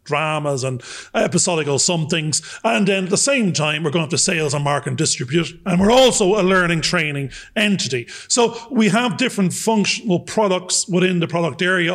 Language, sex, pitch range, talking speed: English, male, 155-200 Hz, 180 wpm